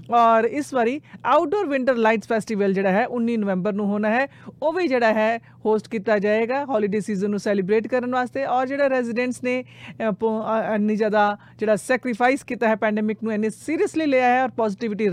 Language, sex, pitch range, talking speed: Punjabi, female, 210-250 Hz, 180 wpm